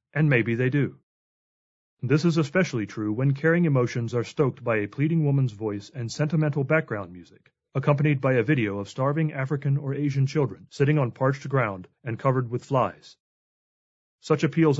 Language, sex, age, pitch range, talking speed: English, male, 30-49, 120-150 Hz, 170 wpm